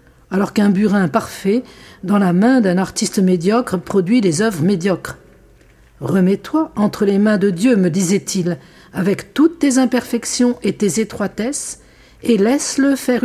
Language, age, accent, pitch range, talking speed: French, 50-69, French, 185-245 Hz, 145 wpm